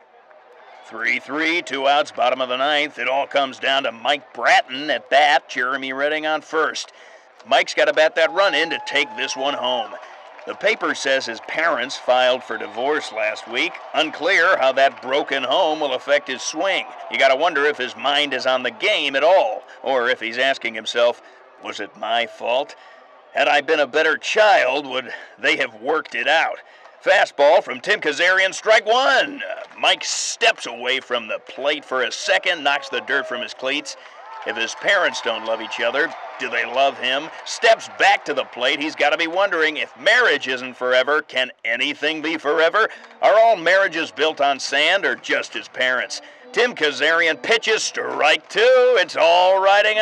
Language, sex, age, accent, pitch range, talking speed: English, male, 50-69, American, 130-185 Hz, 180 wpm